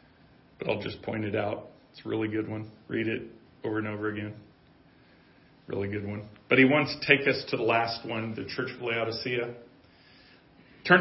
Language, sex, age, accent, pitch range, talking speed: English, male, 40-59, American, 125-165 Hz, 190 wpm